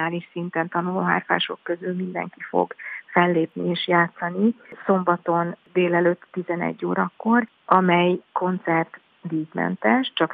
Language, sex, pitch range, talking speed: Hungarian, female, 165-180 Hz, 105 wpm